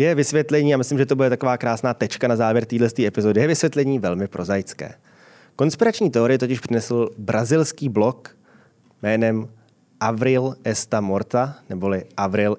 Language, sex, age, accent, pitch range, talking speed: Czech, male, 20-39, native, 110-150 Hz, 150 wpm